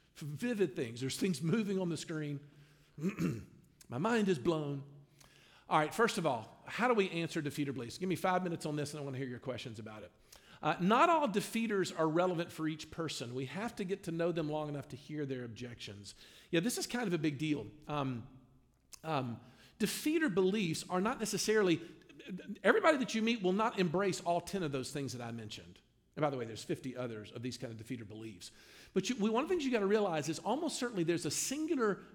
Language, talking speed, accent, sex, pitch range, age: English, 220 wpm, American, male, 135-195 Hz, 50-69